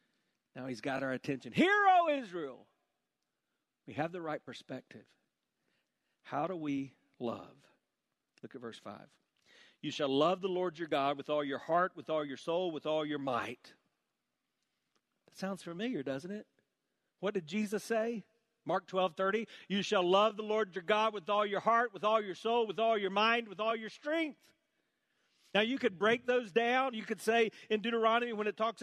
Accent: American